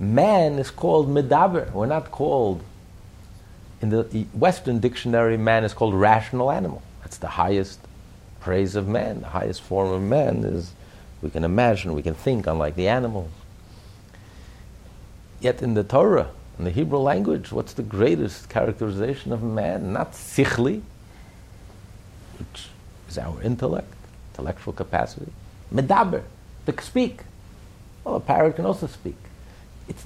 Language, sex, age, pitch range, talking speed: English, male, 50-69, 95-135 Hz, 140 wpm